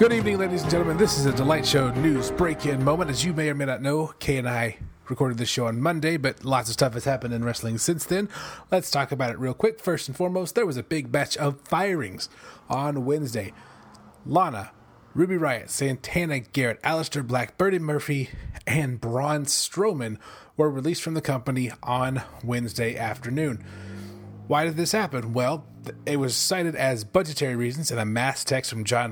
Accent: American